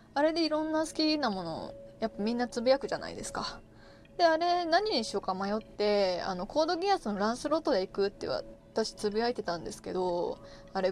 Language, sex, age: Japanese, female, 20-39